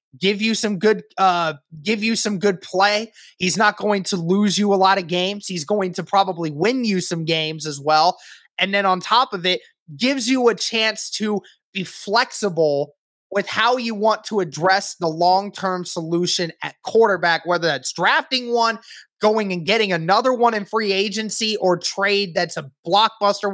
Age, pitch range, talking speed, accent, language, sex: 20-39, 185-235 Hz, 180 wpm, American, English, male